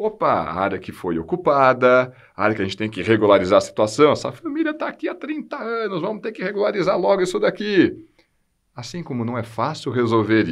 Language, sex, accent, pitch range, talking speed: English, male, Brazilian, 105-155 Hz, 195 wpm